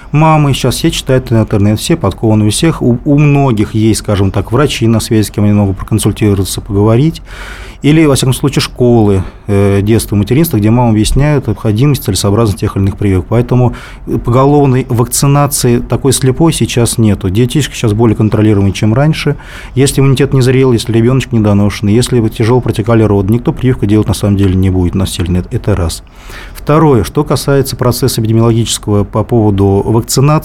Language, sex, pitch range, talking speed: Russian, male, 100-130 Hz, 170 wpm